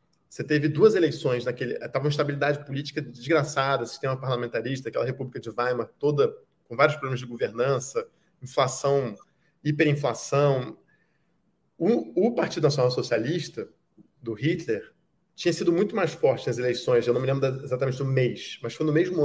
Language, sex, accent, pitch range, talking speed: Portuguese, male, Brazilian, 135-170 Hz, 155 wpm